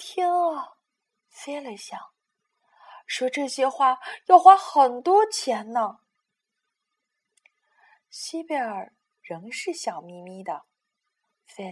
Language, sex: Chinese, female